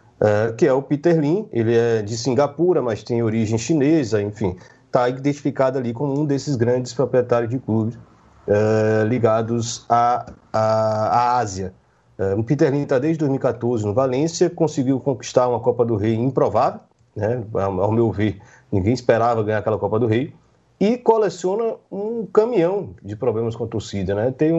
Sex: male